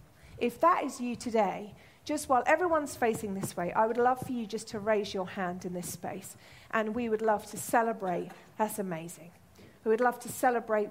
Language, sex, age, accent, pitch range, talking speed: English, female, 40-59, British, 200-255 Hz, 205 wpm